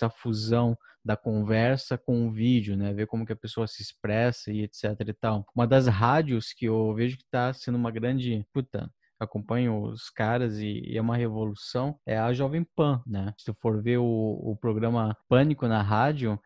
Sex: male